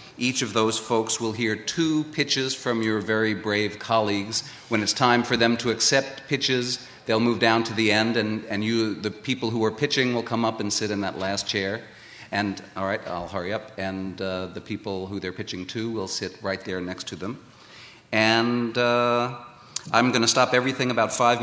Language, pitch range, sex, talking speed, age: English, 100-120 Hz, male, 205 wpm, 40-59